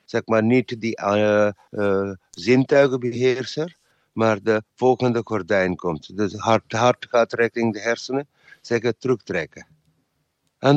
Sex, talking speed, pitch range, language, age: male, 130 wpm, 115-145 Hz, English, 60-79